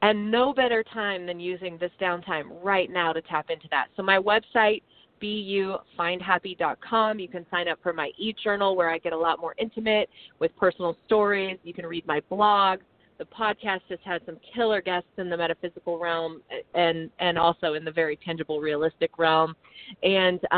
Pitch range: 165-200 Hz